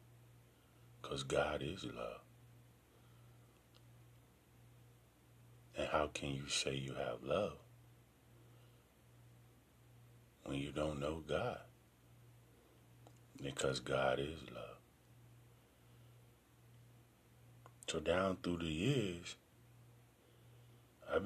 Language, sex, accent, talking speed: English, male, American, 75 wpm